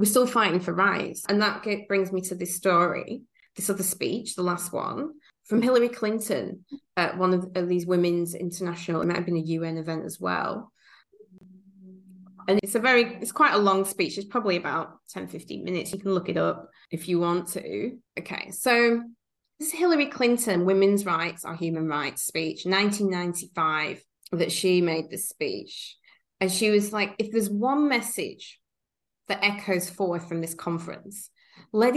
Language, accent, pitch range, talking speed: English, British, 175-205 Hz, 180 wpm